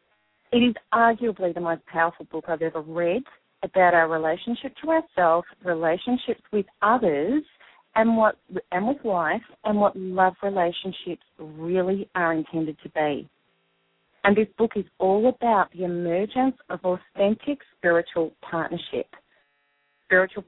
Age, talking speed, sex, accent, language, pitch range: 40-59, 130 wpm, female, Australian, English, 165-205 Hz